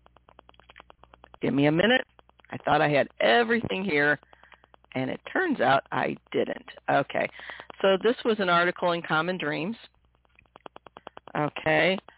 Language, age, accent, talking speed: English, 50-69, American, 130 wpm